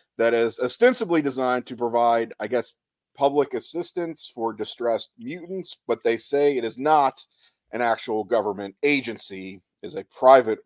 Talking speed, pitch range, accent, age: 150 wpm, 110-150 Hz, American, 40-59